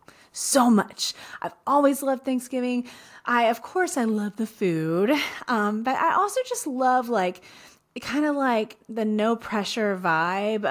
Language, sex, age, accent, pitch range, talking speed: English, female, 20-39, American, 190-260 Hz, 150 wpm